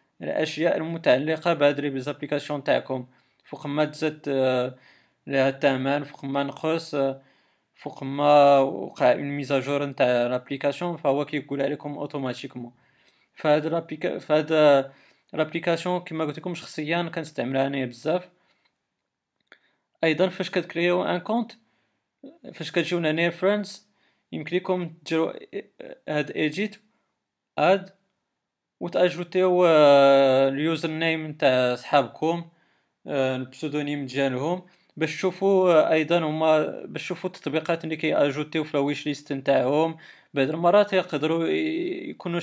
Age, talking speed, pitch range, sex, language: 20-39, 105 wpm, 140-170 Hz, male, Arabic